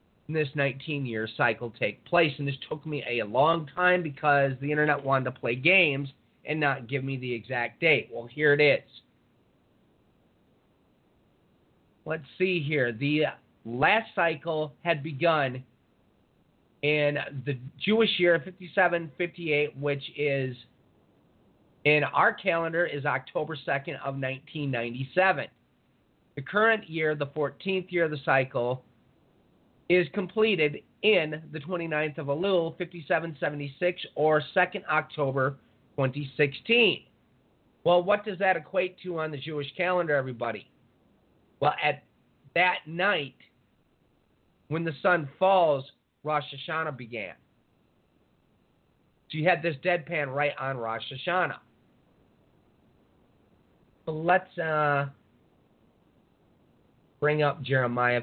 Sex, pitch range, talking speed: male, 135-175 Hz, 115 wpm